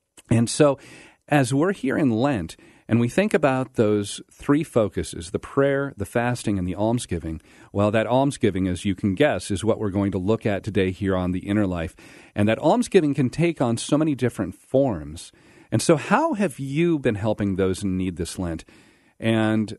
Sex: male